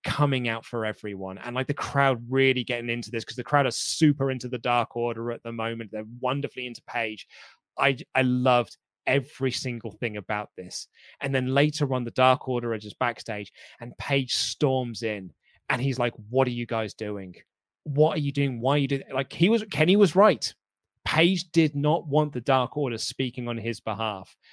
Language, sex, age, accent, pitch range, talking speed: English, male, 20-39, British, 115-150 Hz, 200 wpm